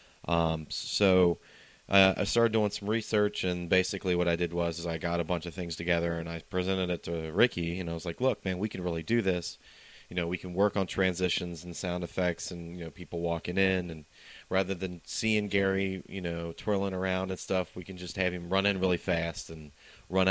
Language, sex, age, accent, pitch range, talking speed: English, male, 30-49, American, 85-95 Hz, 230 wpm